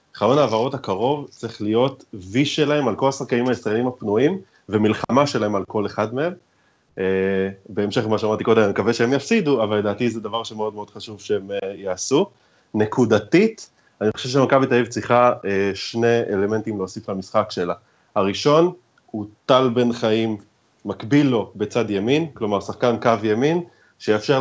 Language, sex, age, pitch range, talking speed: Hebrew, male, 30-49, 105-130 Hz, 155 wpm